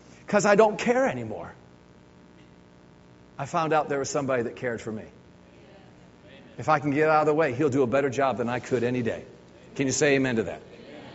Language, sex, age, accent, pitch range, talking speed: English, male, 50-69, American, 125-195 Hz, 210 wpm